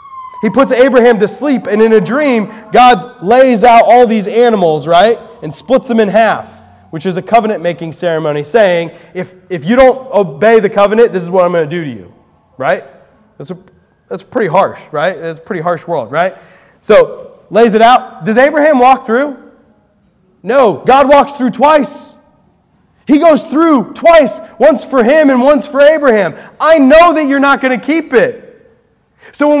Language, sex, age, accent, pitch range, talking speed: English, male, 20-39, American, 175-275 Hz, 185 wpm